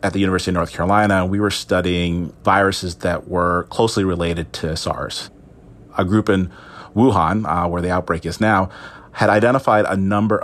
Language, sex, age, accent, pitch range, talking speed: English, male, 30-49, American, 85-105 Hz, 175 wpm